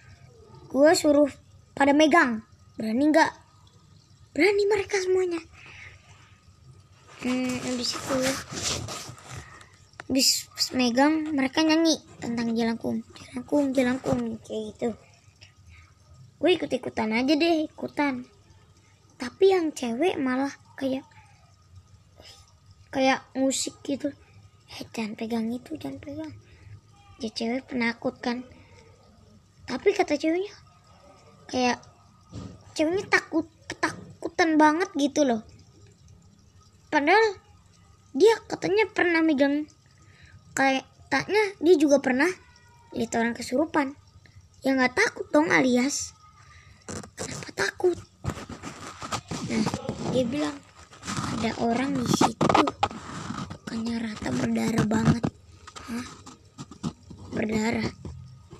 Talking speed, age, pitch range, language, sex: 95 wpm, 20-39, 220-310 Hz, Indonesian, male